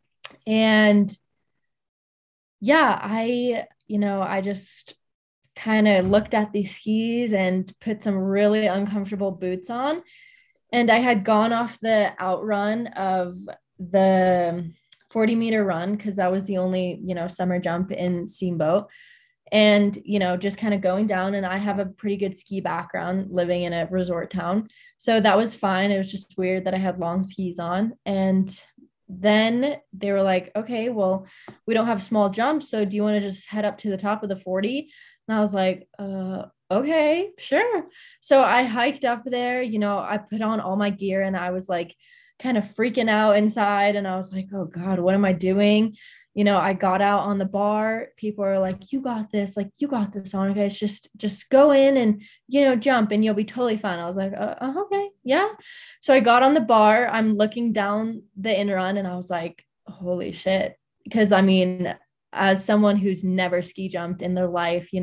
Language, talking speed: English, 195 wpm